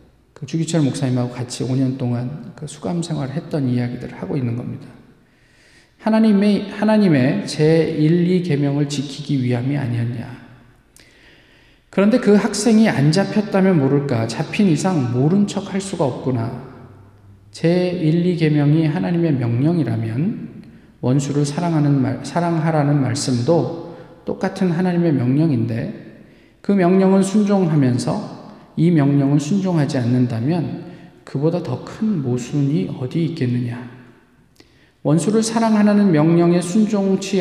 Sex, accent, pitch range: male, native, 130-175 Hz